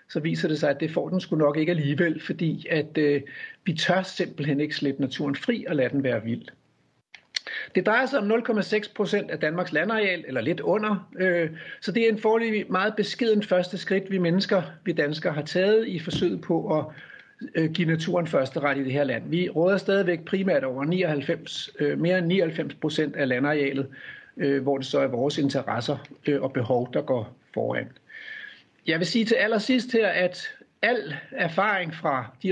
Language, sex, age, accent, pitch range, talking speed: Danish, male, 60-79, native, 150-190 Hz, 195 wpm